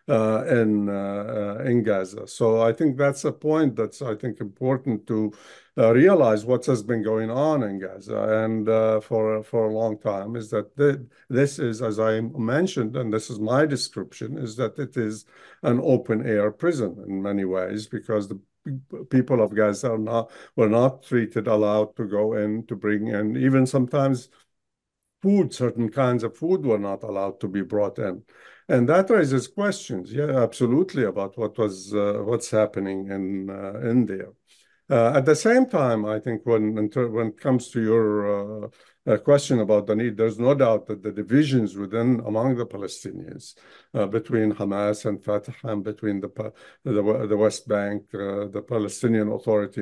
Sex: male